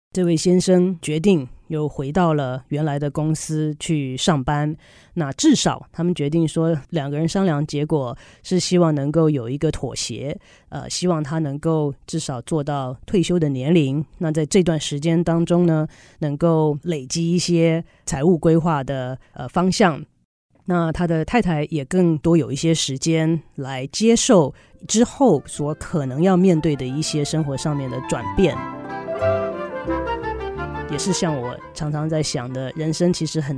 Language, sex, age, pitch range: Chinese, female, 30-49, 150-190 Hz